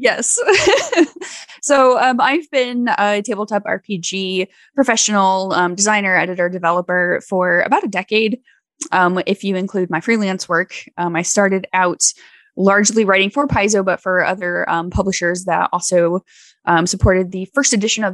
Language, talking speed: English, 145 wpm